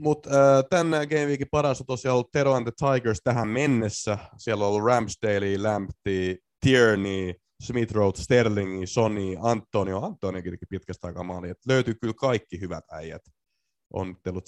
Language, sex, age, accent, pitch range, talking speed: Finnish, male, 20-39, native, 100-130 Hz, 140 wpm